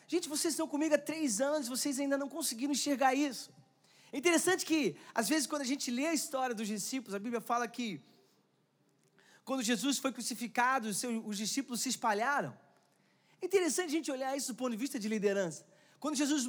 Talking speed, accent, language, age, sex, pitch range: 195 wpm, Brazilian, Portuguese, 20-39, male, 240-295 Hz